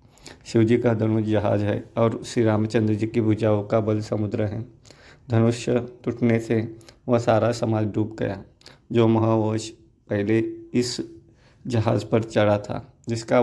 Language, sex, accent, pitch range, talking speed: Hindi, male, native, 105-120 Hz, 145 wpm